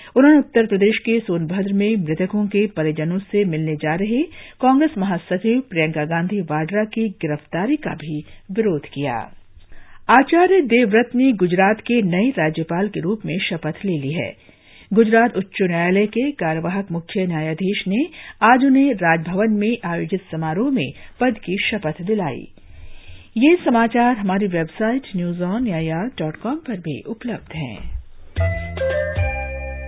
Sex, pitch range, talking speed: female, 160-230 Hz, 110 wpm